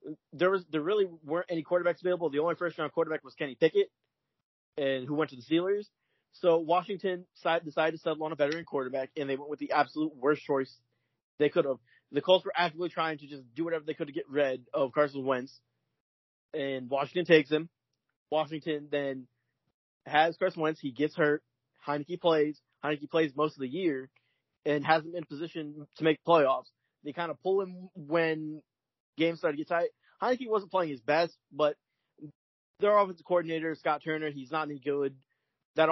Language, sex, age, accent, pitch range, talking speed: English, male, 30-49, American, 145-170 Hz, 190 wpm